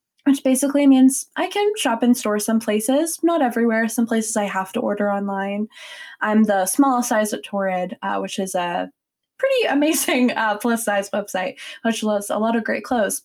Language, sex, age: English, female, 20-39